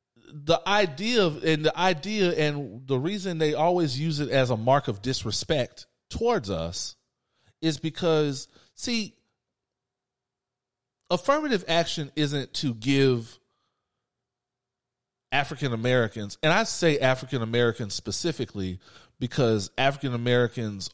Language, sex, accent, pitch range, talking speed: English, male, American, 110-150 Hz, 110 wpm